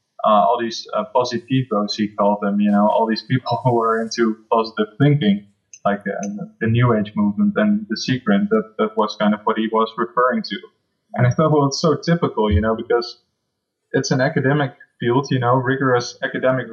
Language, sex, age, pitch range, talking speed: English, male, 20-39, 110-130 Hz, 195 wpm